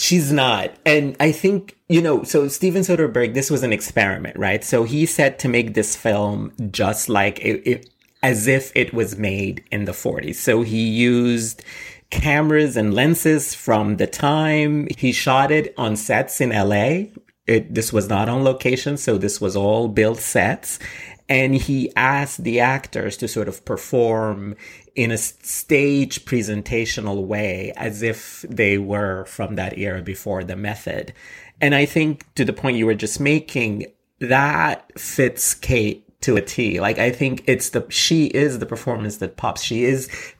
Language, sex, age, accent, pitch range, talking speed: English, male, 30-49, American, 105-145 Hz, 170 wpm